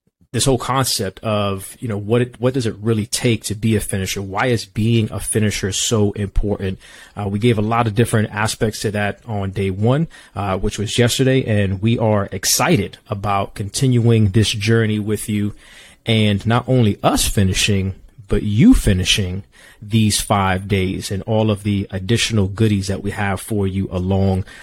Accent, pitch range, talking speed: American, 100-115 Hz, 180 wpm